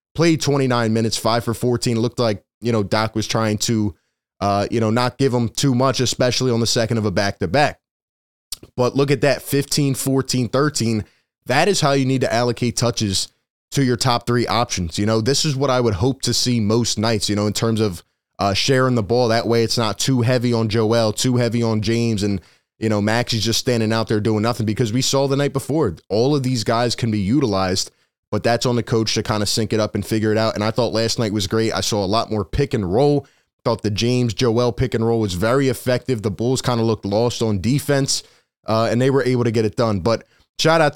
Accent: American